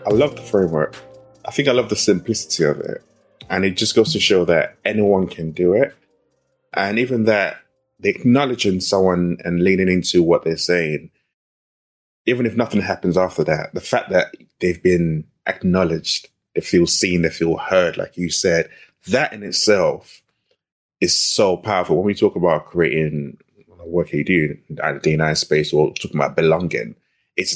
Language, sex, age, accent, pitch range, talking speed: English, male, 20-39, British, 80-100 Hz, 175 wpm